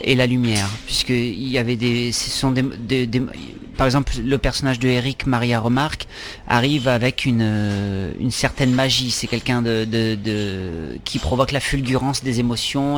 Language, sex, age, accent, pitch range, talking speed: French, male, 40-59, French, 120-150 Hz, 175 wpm